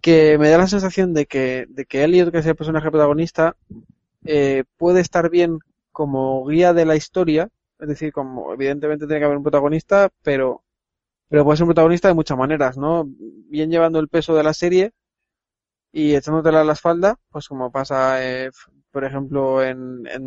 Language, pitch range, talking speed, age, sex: Spanish, 140-170 Hz, 185 wpm, 20-39, male